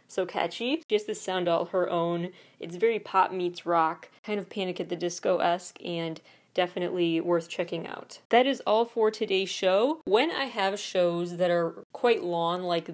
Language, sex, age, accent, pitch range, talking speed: English, female, 20-39, American, 175-205 Hz, 185 wpm